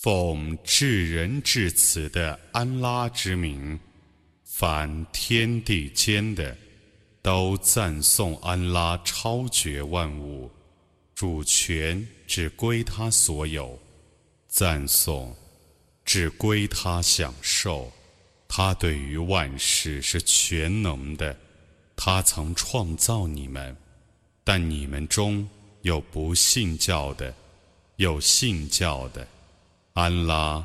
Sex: male